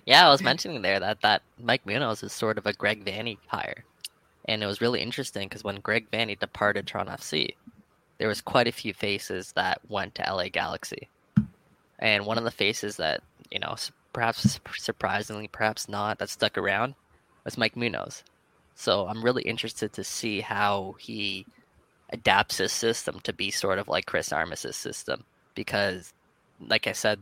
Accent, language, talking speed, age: American, English, 175 wpm, 10-29